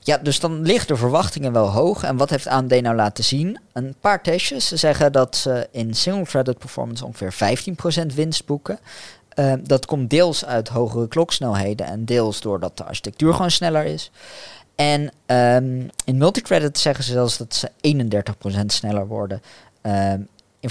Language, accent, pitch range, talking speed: Dutch, Dutch, 105-145 Hz, 160 wpm